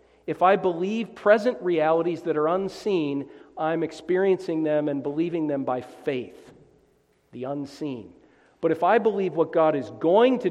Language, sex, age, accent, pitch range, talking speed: English, male, 50-69, American, 140-180 Hz, 155 wpm